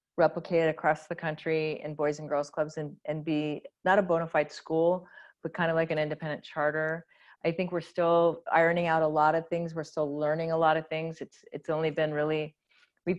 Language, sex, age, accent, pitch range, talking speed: English, female, 30-49, American, 155-175 Hz, 215 wpm